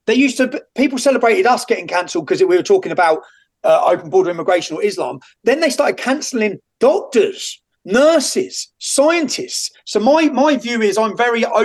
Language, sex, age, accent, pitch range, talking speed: English, male, 30-49, British, 190-300 Hz, 170 wpm